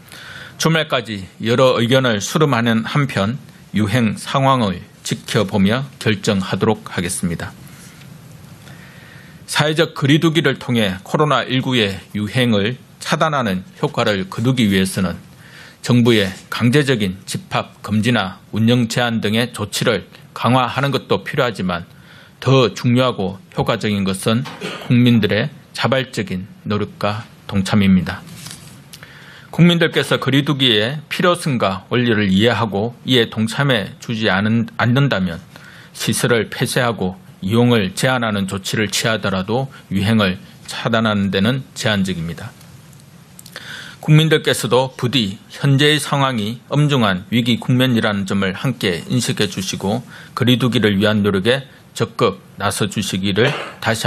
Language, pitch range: Korean, 105-145 Hz